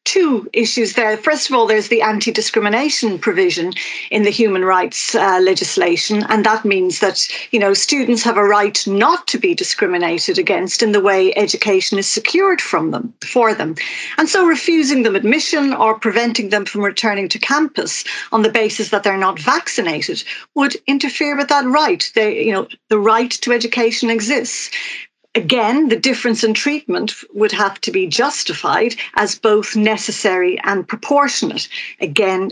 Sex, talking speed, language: female, 165 wpm, English